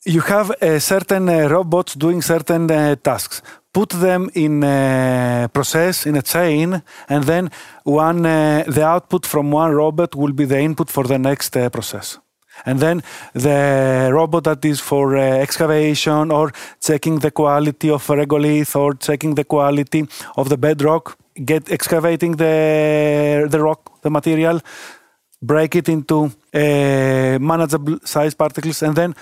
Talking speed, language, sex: 155 wpm, English, male